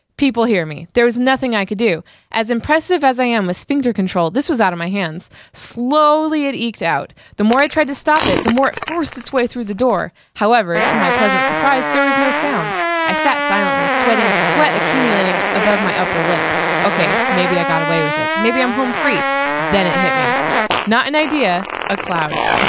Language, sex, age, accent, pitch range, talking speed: English, female, 20-39, American, 190-290 Hz, 220 wpm